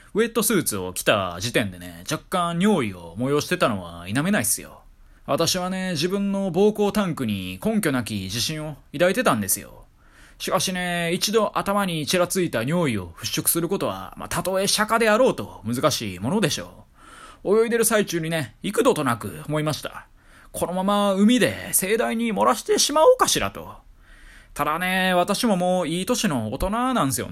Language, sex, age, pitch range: Japanese, male, 20-39, 120-195 Hz